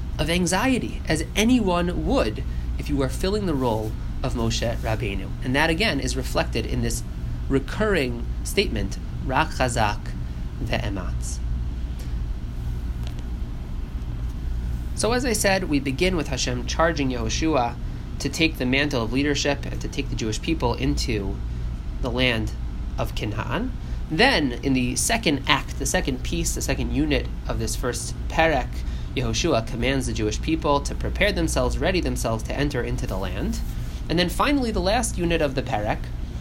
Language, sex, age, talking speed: English, male, 30-49, 150 wpm